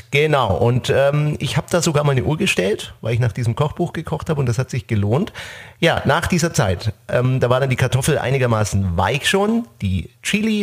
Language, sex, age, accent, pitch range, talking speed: German, male, 30-49, German, 100-135 Hz, 215 wpm